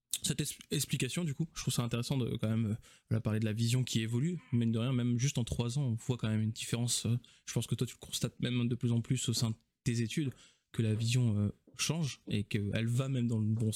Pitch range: 110-130 Hz